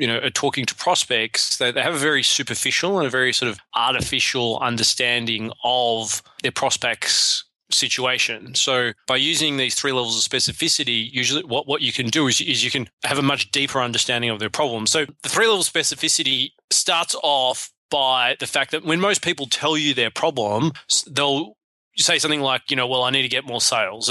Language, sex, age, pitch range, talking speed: English, male, 20-39, 125-150 Hz, 195 wpm